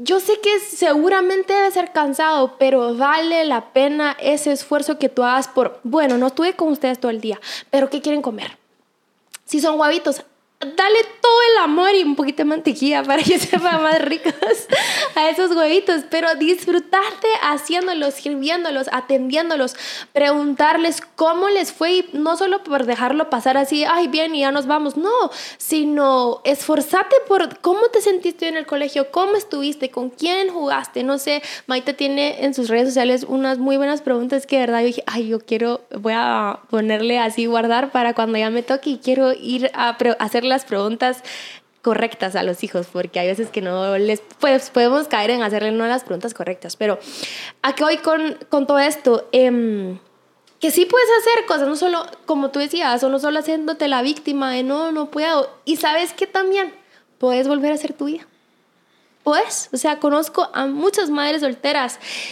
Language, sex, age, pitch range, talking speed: Spanish, female, 10-29, 255-330 Hz, 180 wpm